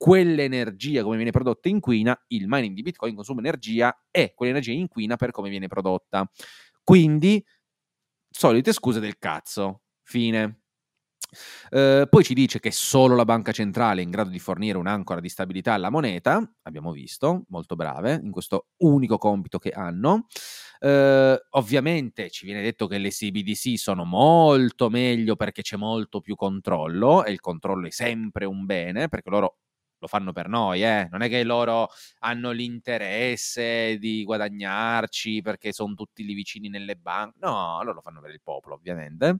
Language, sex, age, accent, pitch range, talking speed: Italian, male, 30-49, native, 105-155 Hz, 165 wpm